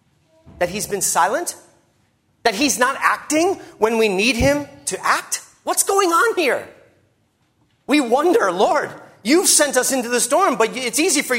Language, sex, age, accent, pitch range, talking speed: English, male, 30-49, American, 185-285 Hz, 165 wpm